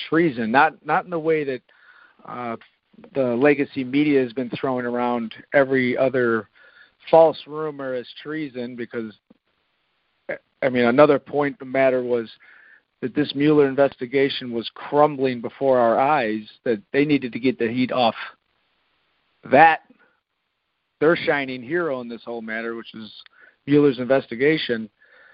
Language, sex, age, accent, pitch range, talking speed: English, male, 40-59, American, 125-150 Hz, 135 wpm